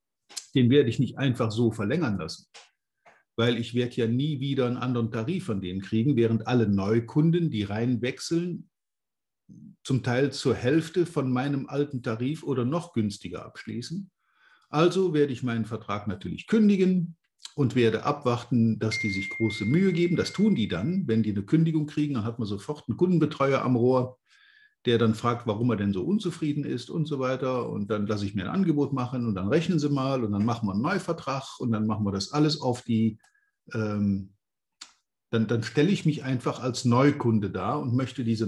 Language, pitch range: German, 110-155 Hz